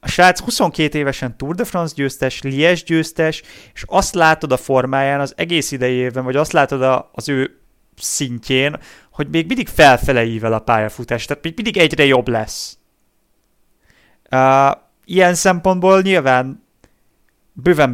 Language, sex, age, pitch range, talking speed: Hungarian, male, 30-49, 125-150 Hz, 140 wpm